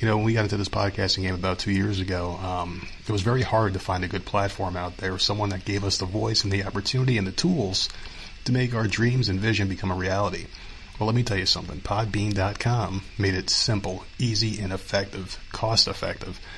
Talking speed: 215 wpm